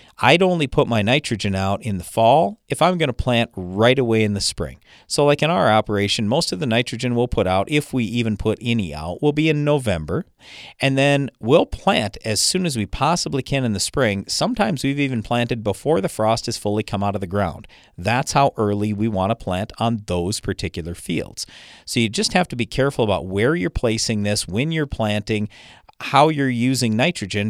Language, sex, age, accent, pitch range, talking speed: English, male, 50-69, American, 105-140 Hz, 210 wpm